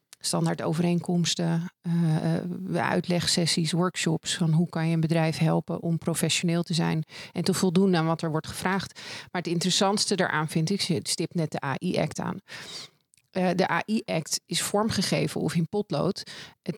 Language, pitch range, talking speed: Dutch, 165-190 Hz, 160 wpm